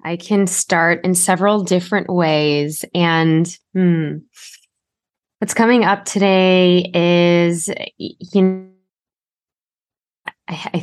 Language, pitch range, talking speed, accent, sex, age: English, 145-175 Hz, 95 wpm, American, female, 20-39